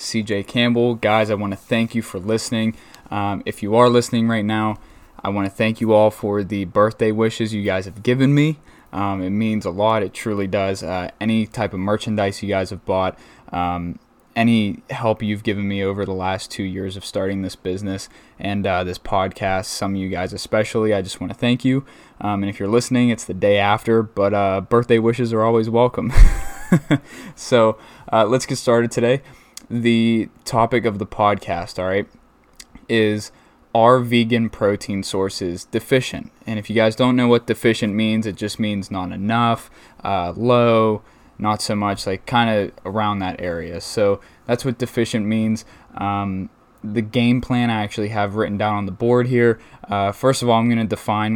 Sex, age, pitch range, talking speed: male, 20-39, 100-115 Hz, 195 wpm